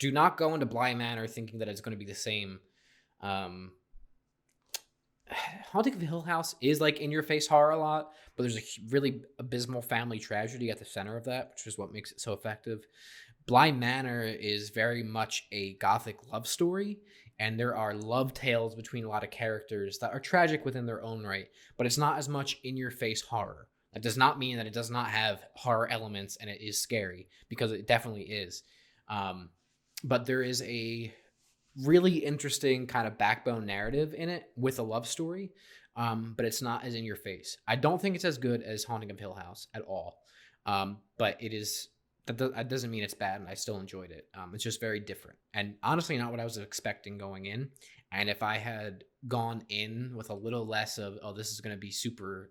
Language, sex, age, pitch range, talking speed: English, male, 20-39, 105-130 Hz, 205 wpm